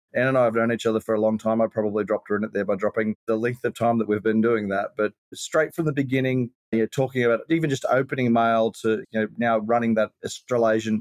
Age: 30-49